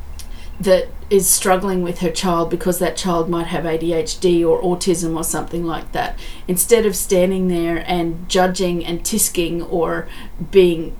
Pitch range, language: 170-195 Hz, English